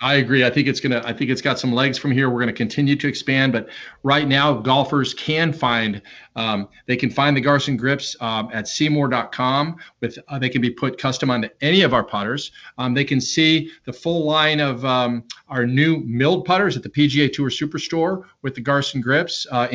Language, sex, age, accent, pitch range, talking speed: English, male, 40-59, American, 125-150 Hz, 215 wpm